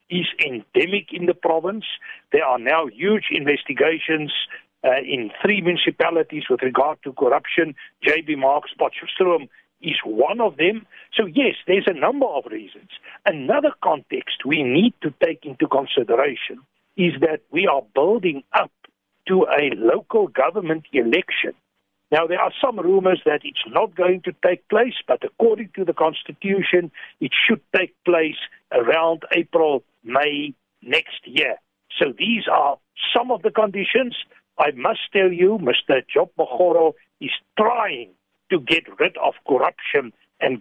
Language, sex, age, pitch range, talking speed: English, male, 60-79, 165-225 Hz, 145 wpm